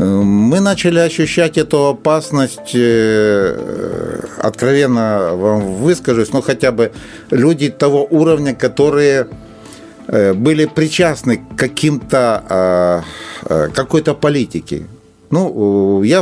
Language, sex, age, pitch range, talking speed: Russian, male, 50-69, 110-150 Hz, 85 wpm